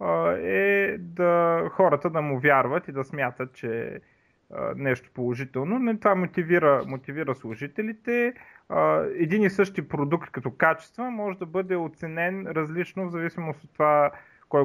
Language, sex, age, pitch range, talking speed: Bulgarian, male, 30-49, 130-180 Hz, 135 wpm